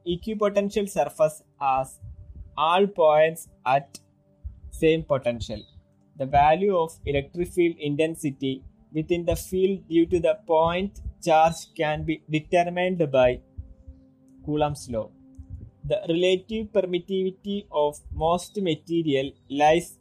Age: 20-39